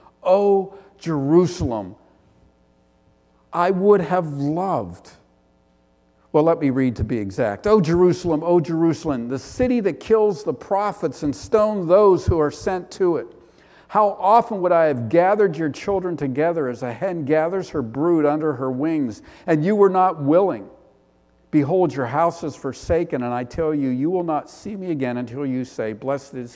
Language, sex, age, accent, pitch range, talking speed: English, male, 50-69, American, 110-170 Hz, 175 wpm